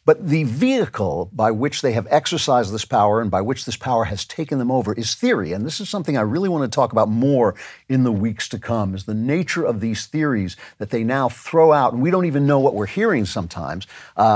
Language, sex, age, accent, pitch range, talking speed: English, male, 50-69, American, 110-150 Hz, 240 wpm